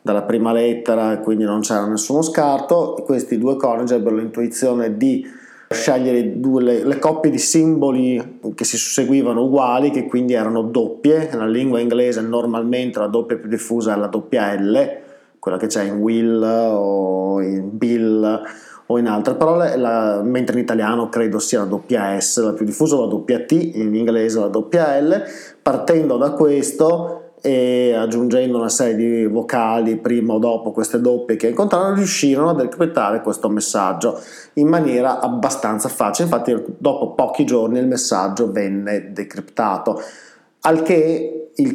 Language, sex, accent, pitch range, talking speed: Italian, male, native, 110-155 Hz, 160 wpm